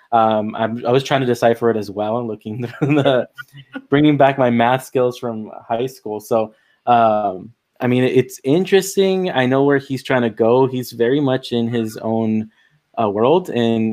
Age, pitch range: 20-39, 110-130 Hz